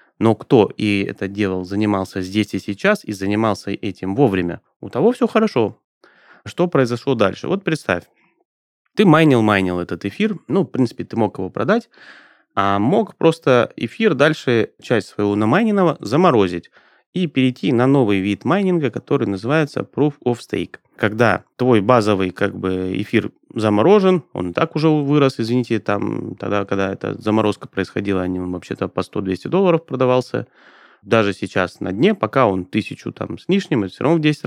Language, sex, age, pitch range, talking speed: Russian, male, 30-49, 100-140 Hz, 160 wpm